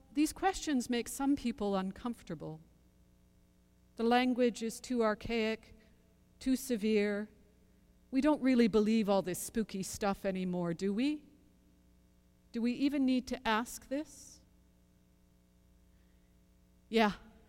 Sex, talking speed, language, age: female, 110 wpm, English, 50-69